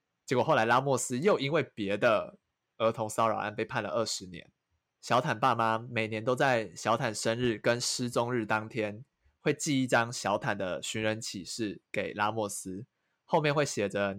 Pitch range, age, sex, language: 105-135 Hz, 20-39, male, Chinese